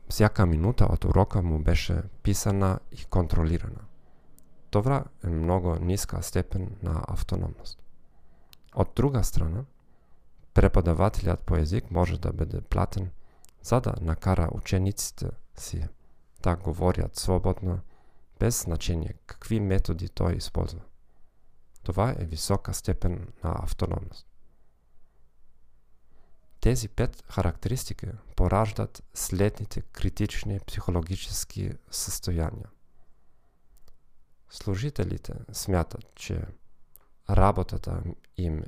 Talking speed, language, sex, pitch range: 90 wpm, Bulgarian, male, 85-105 Hz